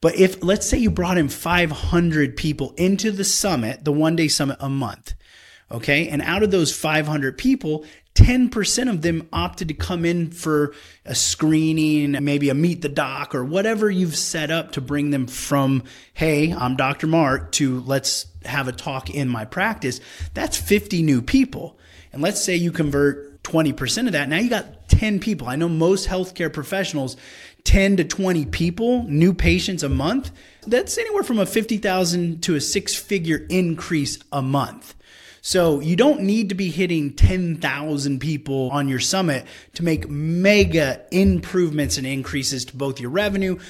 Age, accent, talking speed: 30-49, American, 170 wpm